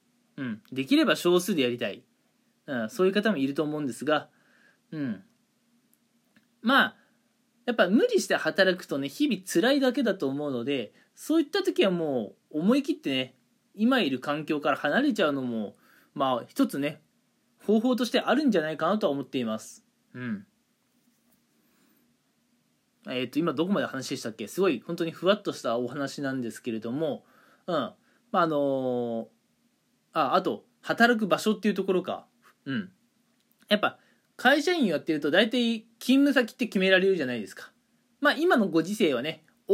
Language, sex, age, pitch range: Japanese, male, 20-39, 155-250 Hz